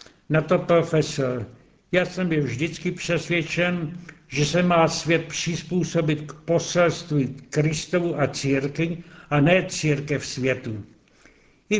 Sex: male